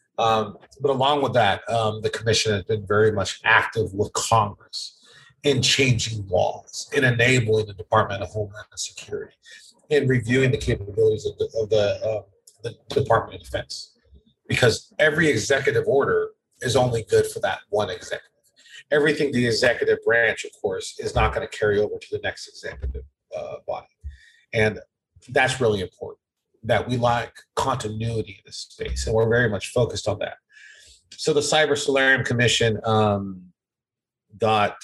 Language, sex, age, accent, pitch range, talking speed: English, male, 40-59, American, 105-145 Hz, 155 wpm